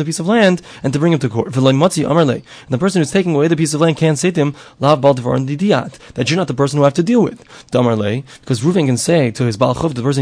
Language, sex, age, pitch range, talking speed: English, male, 20-39, 130-165 Hz, 255 wpm